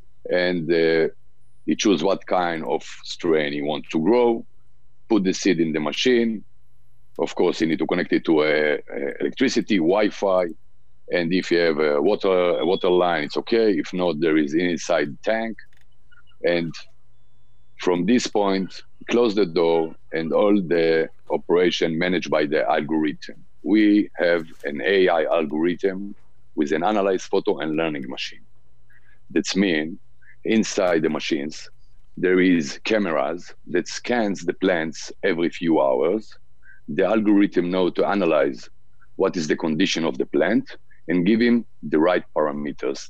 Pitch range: 80-120 Hz